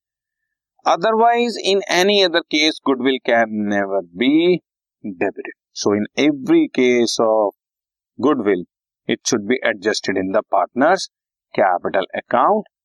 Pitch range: 120-160 Hz